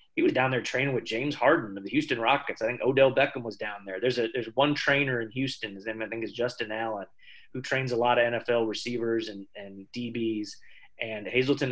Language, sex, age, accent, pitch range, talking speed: English, male, 30-49, American, 115-135 Hz, 230 wpm